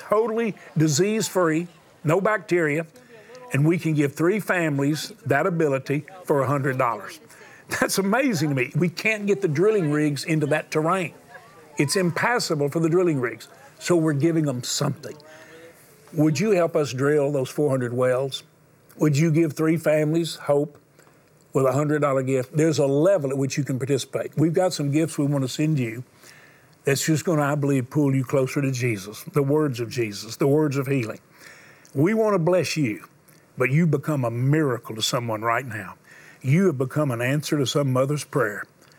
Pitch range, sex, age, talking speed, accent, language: 135-160 Hz, male, 50-69, 175 wpm, American, English